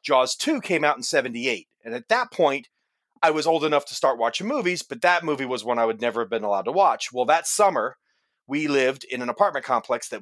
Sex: male